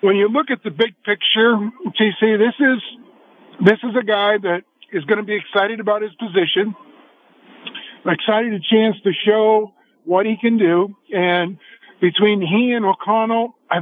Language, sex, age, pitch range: English, male, 50-69, 180-220 Hz